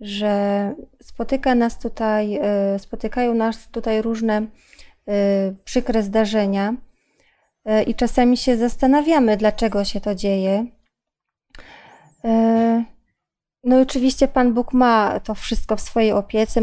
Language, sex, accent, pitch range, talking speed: Polish, female, native, 205-245 Hz, 105 wpm